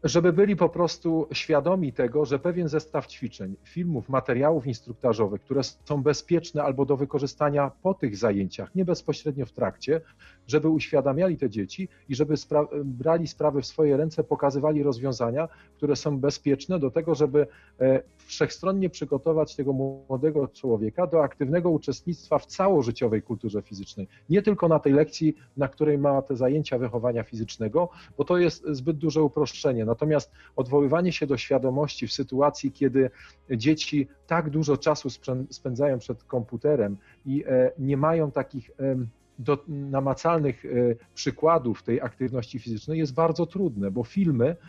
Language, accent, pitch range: Polish, native, 130-155 Hz